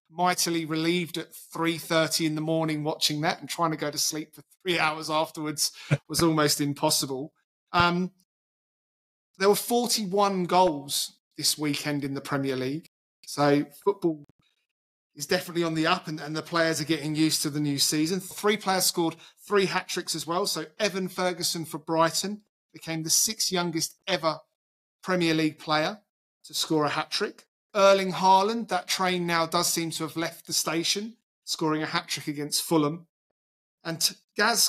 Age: 30-49